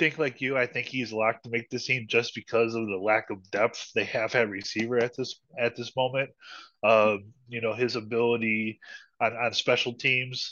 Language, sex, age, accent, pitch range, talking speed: English, male, 20-39, American, 110-125 Hz, 205 wpm